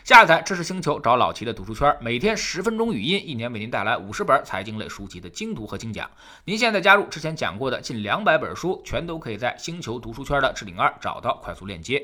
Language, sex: Chinese, male